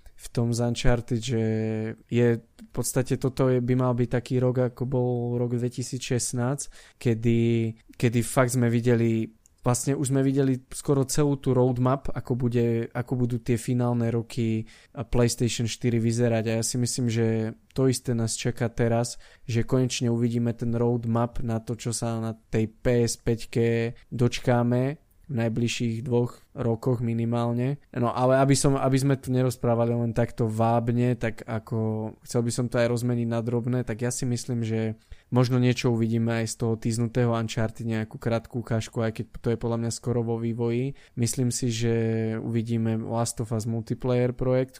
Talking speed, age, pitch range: 165 wpm, 20-39, 115-125 Hz